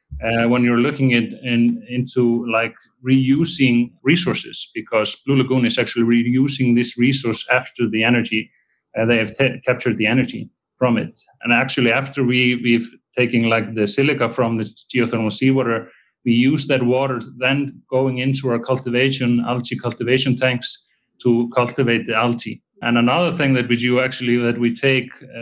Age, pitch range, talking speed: 30-49, 115-130 Hz, 165 wpm